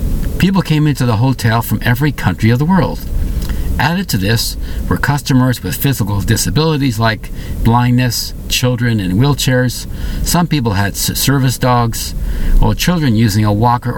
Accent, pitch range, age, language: American, 100-130 Hz, 50-69, English